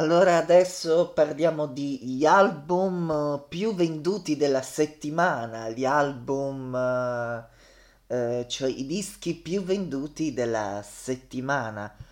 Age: 20-39